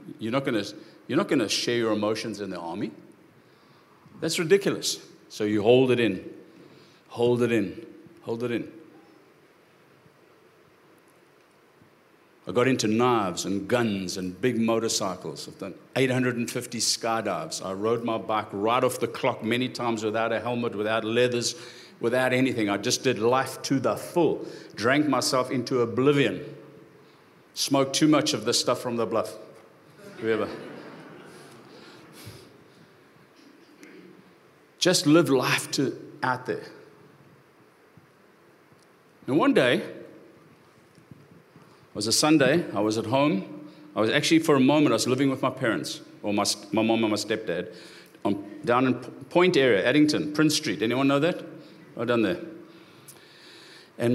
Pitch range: 110-140 Hz